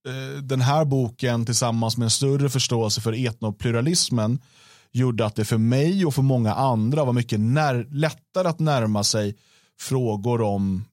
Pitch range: 110-130 Hz